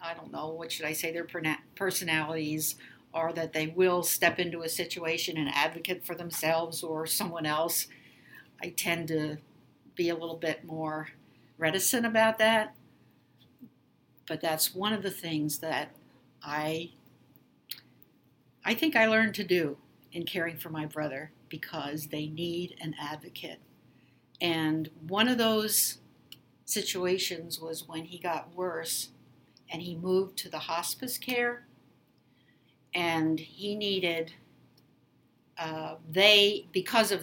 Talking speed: 135 wpm